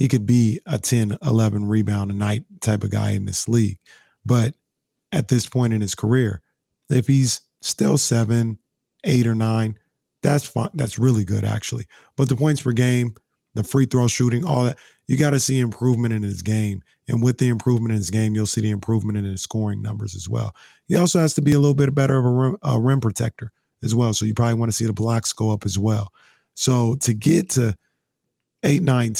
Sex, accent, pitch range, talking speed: male, American, 110-130 Hz, 215 wpm